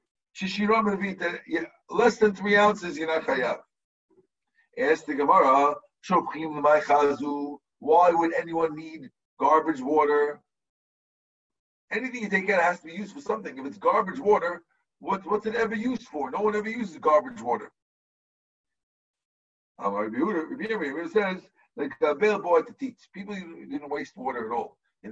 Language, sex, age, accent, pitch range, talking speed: English, male, 50-69, American, 155-250 Hz, 135 wpm